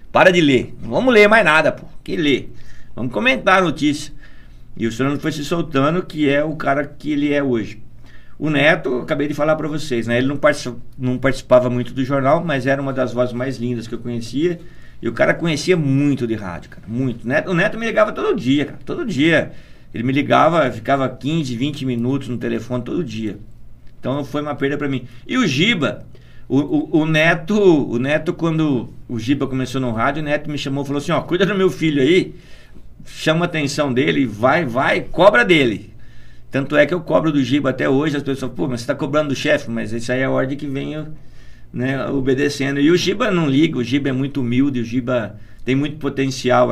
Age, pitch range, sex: 50-69, 125-150 Hz, male